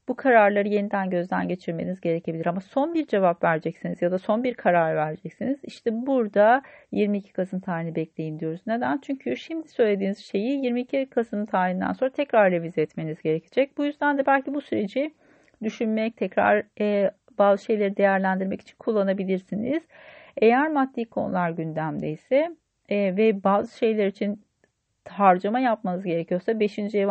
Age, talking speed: 40-59, 140 wpm